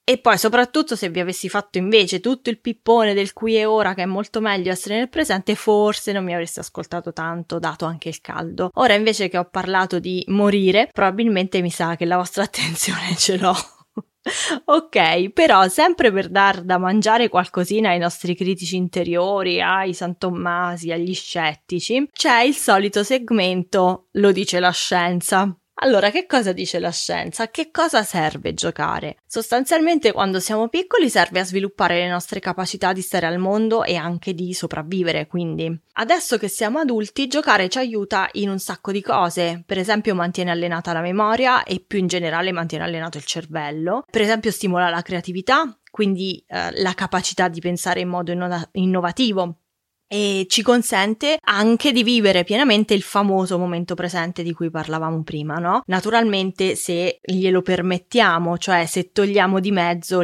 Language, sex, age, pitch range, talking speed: English, female, 20-39, 175-215 Hz, 165 wpm